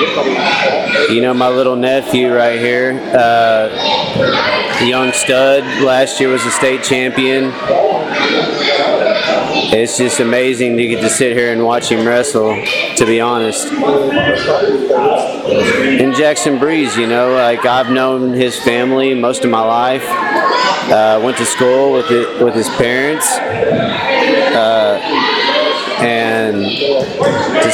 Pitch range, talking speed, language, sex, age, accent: 120-130 Hz, 120 wpm, English, male, 30-49, American